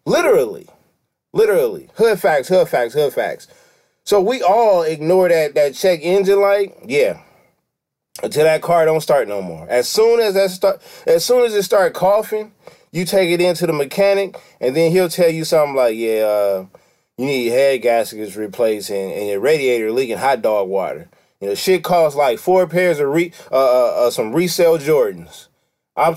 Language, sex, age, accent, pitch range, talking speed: English, male, 20-39, American, 160-225 Hz, 185 wpm